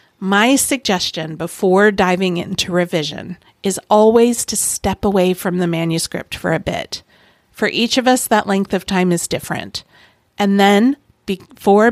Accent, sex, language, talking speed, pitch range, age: American, female, English, 150 wpm, 180-210 Hz, 50-69